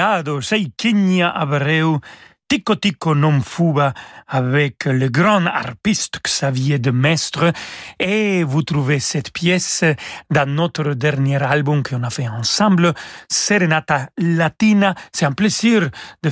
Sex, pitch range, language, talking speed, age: male, 140-185 Hz, French, 120 wpm, 40-59